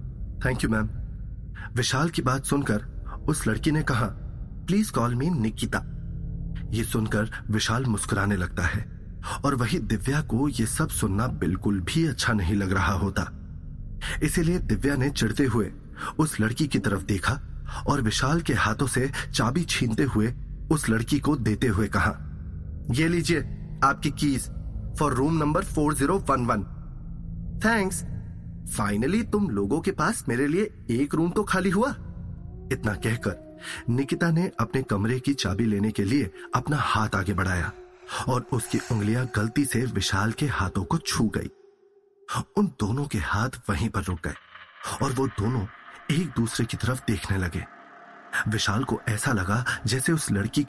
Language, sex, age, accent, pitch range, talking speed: Hindi, male, 30-49, native, 105-145 Hz, 150 wpm